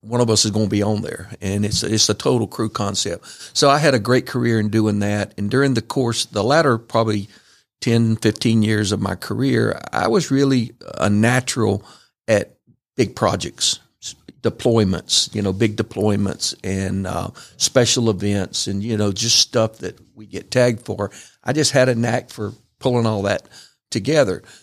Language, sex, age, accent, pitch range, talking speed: English, male, 50-69, American, 105-120 Hz, 185 wpm